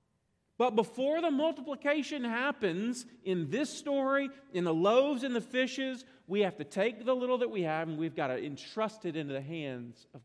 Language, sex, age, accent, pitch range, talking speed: English, male, 40-59, American, 175-240 Hz, 195 wpm